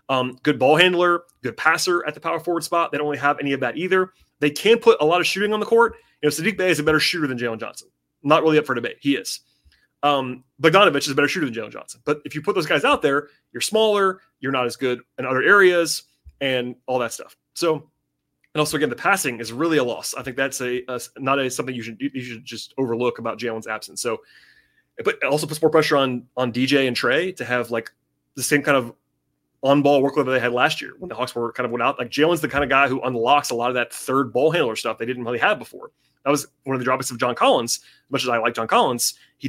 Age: 30-49